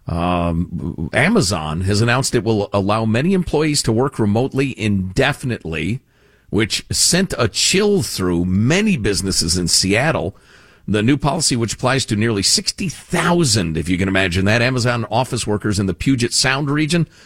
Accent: American